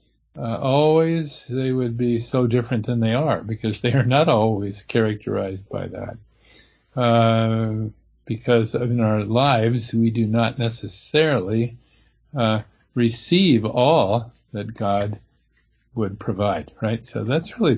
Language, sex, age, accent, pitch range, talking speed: English, male, 50-69, American, 110-135 Hz, 130 wpm